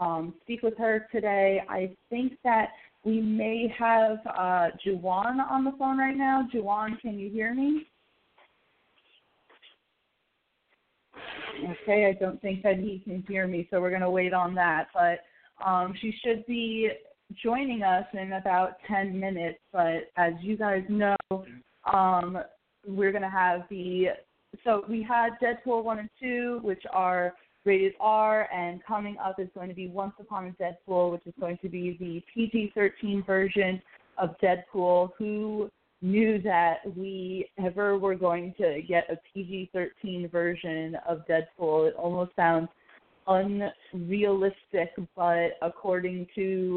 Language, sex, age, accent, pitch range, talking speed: English, female, 20-39, American, 175-205 Hz, 145 wpm